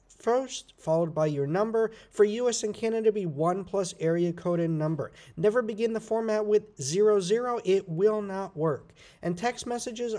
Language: English